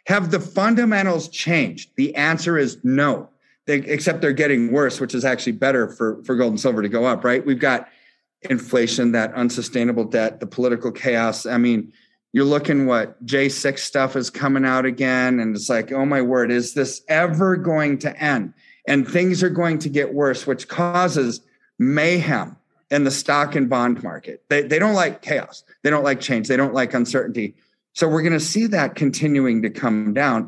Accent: American